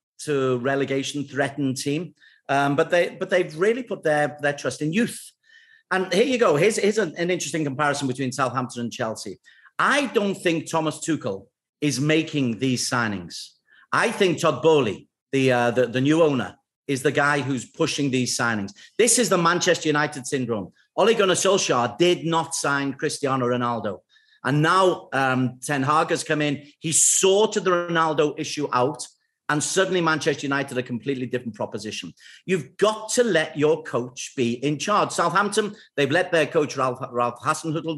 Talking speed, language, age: 170 wpm, English, 40-59